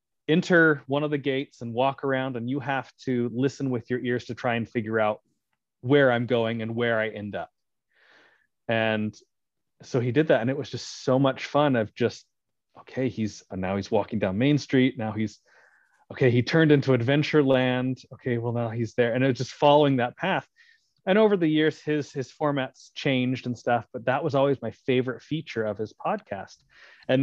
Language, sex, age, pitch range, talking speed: English, male, 30-49, 115-135 Hz, 205 wpm